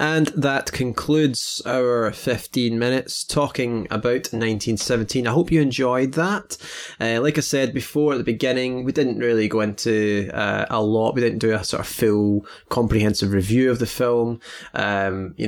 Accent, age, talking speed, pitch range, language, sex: British, 20-39, 170 wpm, 105-130 Hz, English, male